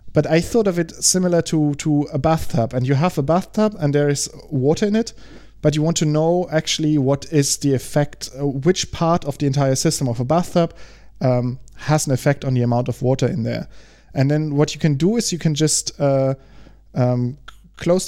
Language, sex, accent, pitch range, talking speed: English, male, German, 130-155 Hz, 210 wpm